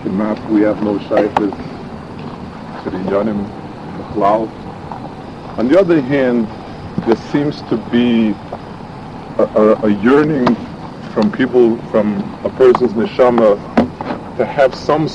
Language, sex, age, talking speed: English, female, 50-69, 115 wpm